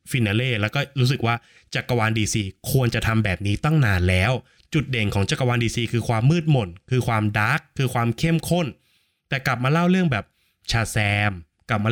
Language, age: Thai, 20-39